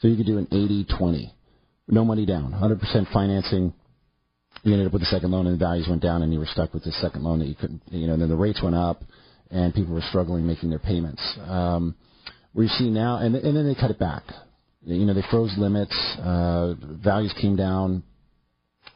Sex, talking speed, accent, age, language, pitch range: male, 220 wpm, American, 40-59, English, 85-105 Hz